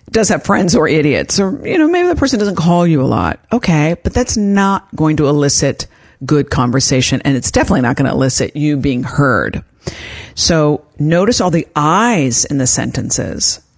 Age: 50-69